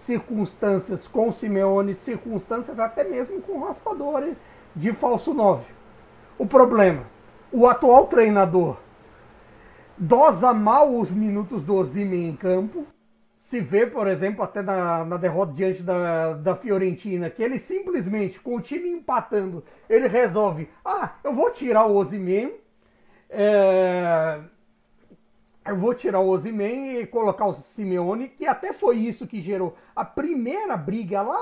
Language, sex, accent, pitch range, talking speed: Portuguese, male, Brazilian, 190-240 Hz, 135 wpm